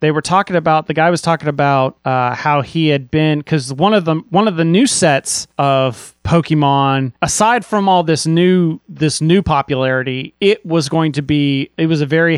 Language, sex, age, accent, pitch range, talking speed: English, male, 30-49, American, 135-165 Hz, 205 wpm